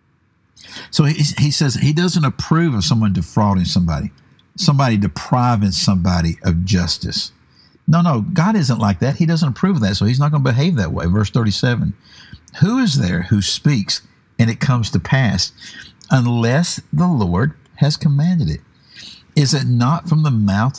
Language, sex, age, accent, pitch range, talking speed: English, male, 60-79, American, 105-150 Hz, 170 wpm